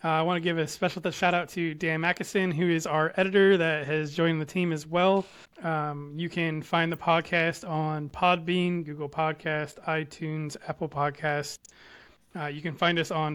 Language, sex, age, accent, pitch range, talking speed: English, male, 20-39, American, 155-180 Hz, 195 wpm